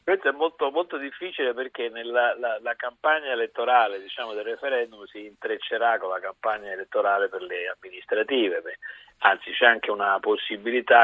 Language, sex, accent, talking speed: Italian, male, native, 160 wpm